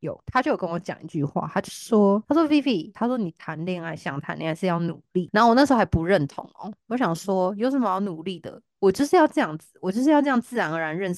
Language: Chinese